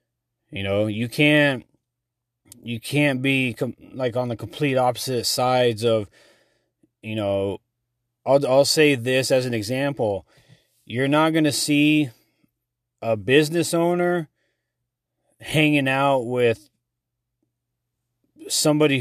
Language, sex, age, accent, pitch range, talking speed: English, male, 30-49, American, 110-130 Hz, 115 wpm